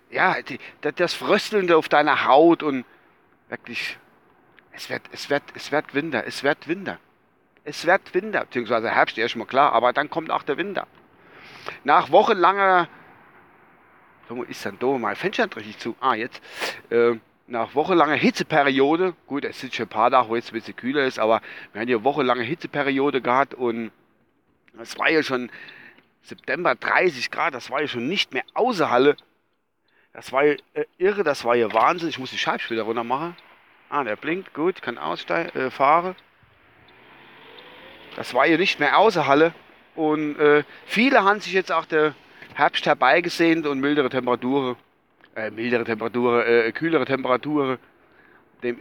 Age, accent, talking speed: 40-59, German, 175 wpm